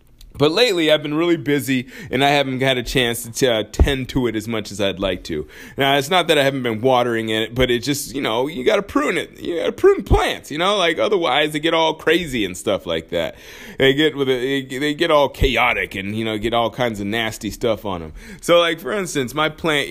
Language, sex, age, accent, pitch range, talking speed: English, male, 30-49, American, 110-150 Hz, 255 wpm